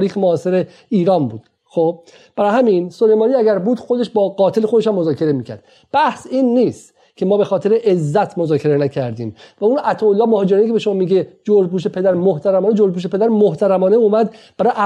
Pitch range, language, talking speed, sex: 175-220 Hz, Persian, 165 wpm, male